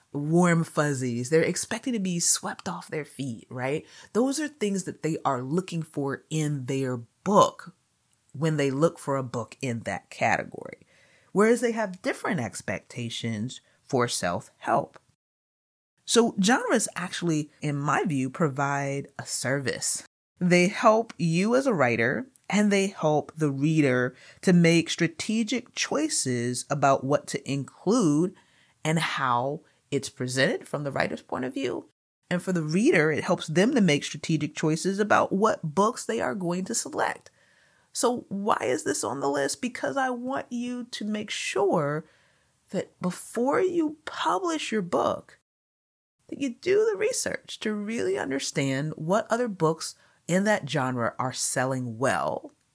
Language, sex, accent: English, female, American